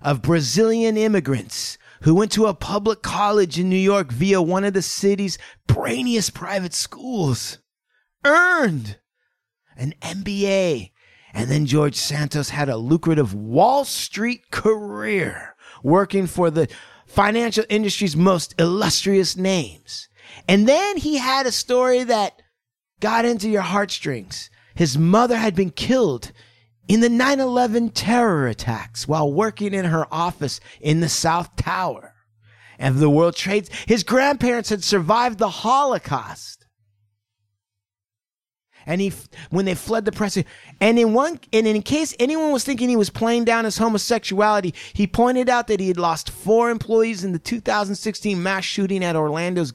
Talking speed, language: 145 wpm, English